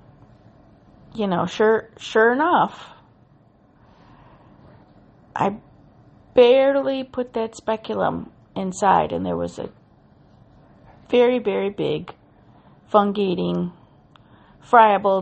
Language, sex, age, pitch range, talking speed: English, female, 40-59, 175-230 Hz, 80 wpm